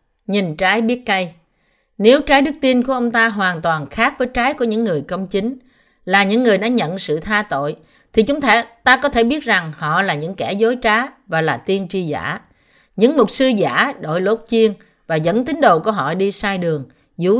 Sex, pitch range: female, 165-235 Hz